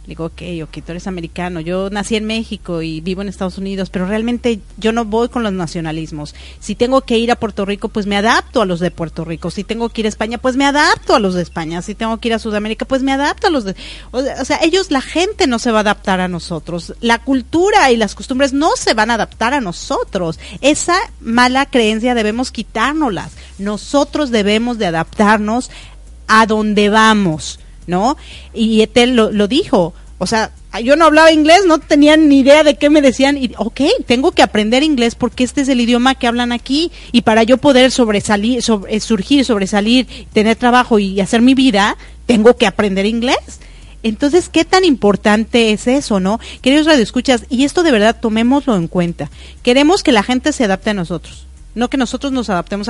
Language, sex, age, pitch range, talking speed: Spanish, female, 40-59, 205-270 Hz, 205 wpm